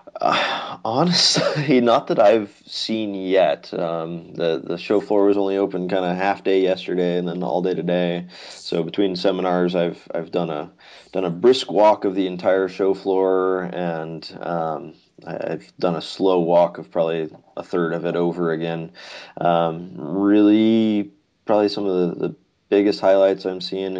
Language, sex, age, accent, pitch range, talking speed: English, male, 20-39, American, 85-95 Hz, 170 wpm